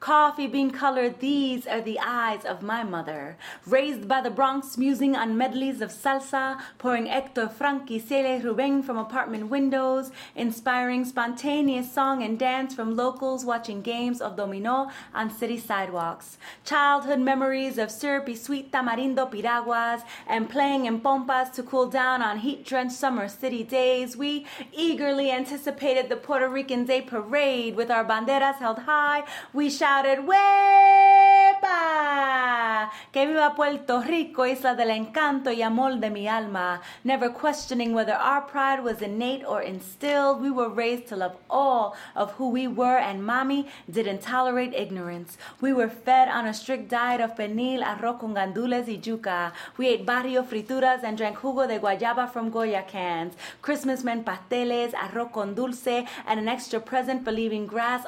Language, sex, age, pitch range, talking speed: English, female, 30-49, 225-270 Hz, 155 wpm